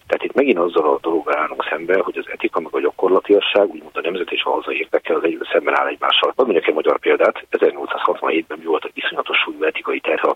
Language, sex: Hungarian, male